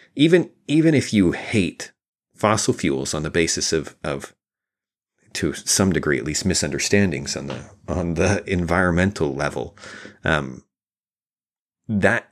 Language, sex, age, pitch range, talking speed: English, male, 30-49, 80-105 Hz, 125 wpm